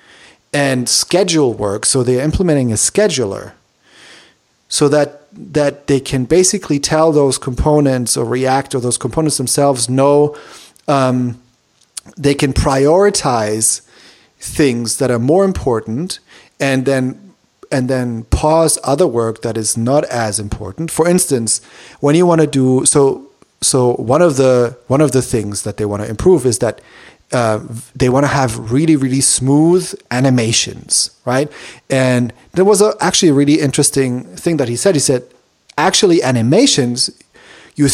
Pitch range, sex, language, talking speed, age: 120-150 Hz, male, English, 150 wpm, 40-59